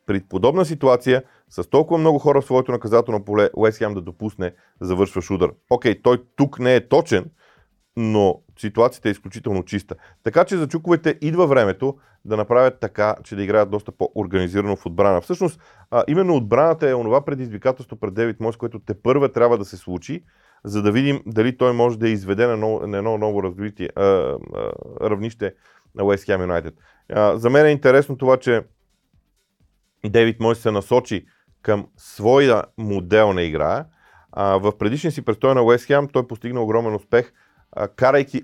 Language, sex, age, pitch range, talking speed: Bulgarian, male, 30-49, 100-130 Hz, 165 wpm